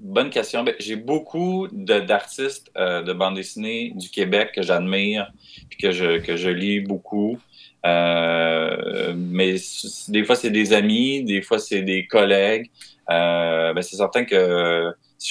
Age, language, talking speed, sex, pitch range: 30-49, French, 155 wpm, male, 90-110 Hz